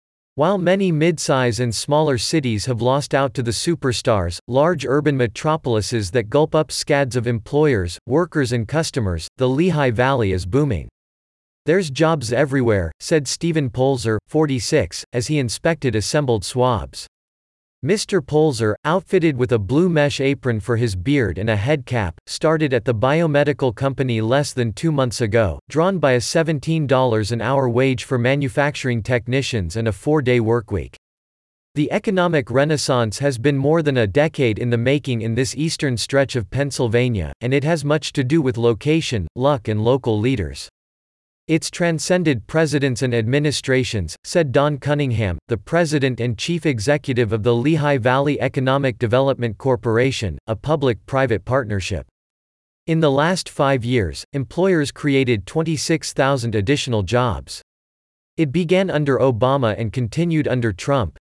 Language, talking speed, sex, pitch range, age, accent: English, 145 wpm, male, 115-150 Hz, 40-59, American